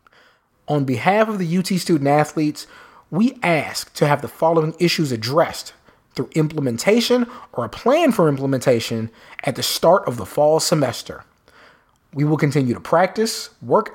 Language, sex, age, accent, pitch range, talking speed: English, male, 30-49, American, 140-190 Hz, 145 wpm